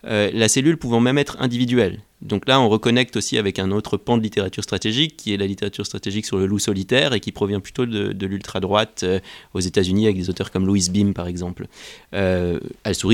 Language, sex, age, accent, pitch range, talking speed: French, male, 30-49, French, 95-115 Hz, 220 wpm